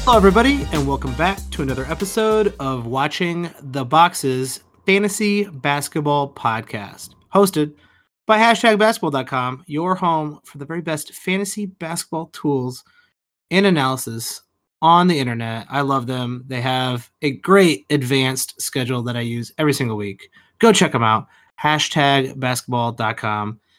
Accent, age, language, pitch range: American, 30-49, English, 130-190 Hz